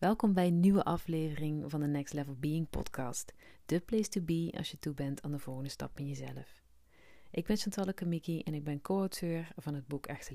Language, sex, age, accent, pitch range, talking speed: Dutch, female, 40-59, Dutch, 140-185 Hz, 215 wpm